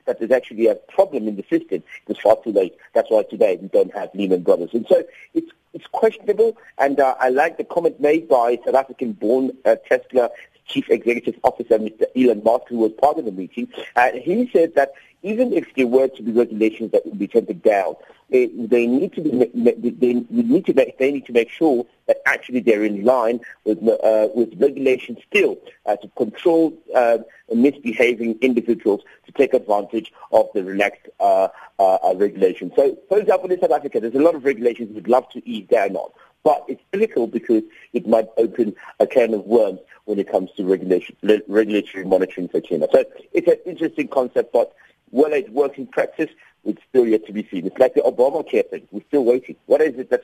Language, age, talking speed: English, 50-69, 190 wpm